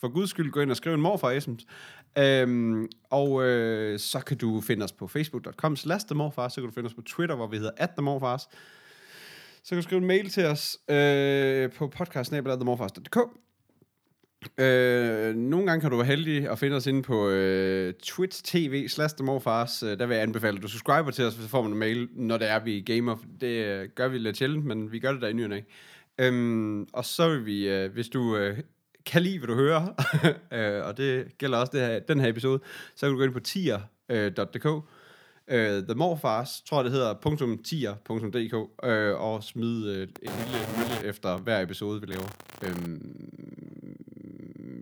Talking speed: 190 wpm